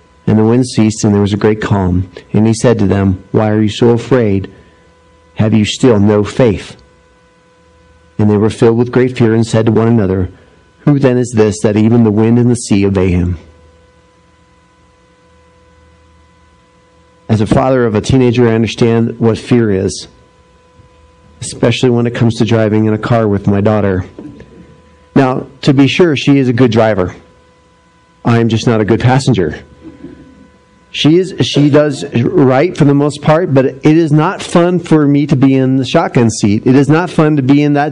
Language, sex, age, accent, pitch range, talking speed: English, male, 50-69, American, 100-145 Hz, 190 wpm